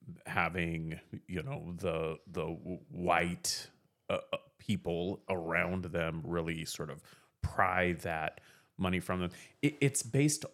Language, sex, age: English, male, 30-49